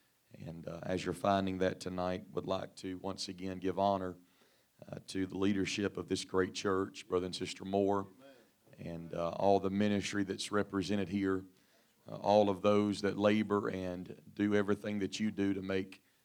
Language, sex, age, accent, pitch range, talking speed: English, male, 40-59, American, 95-105 Hz, 175 wpm